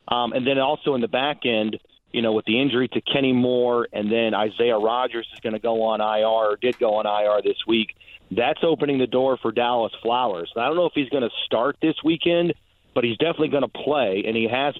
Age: 40-59